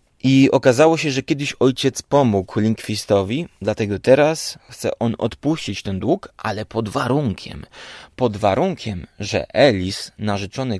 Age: 30-49